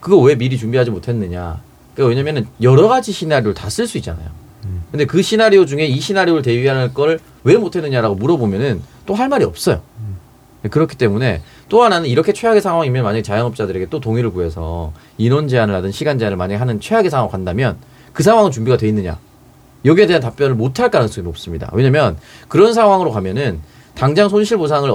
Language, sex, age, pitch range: Korean, male, 30-49, 105-150 Hz